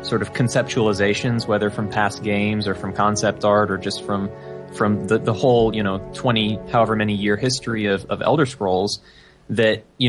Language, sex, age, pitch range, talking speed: English, male, 20-39, 105-125 Hz, 185 wpm